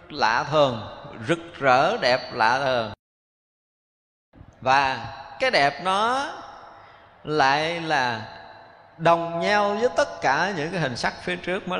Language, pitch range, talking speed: Vietnamese, 135-185 Hz, 125 wpm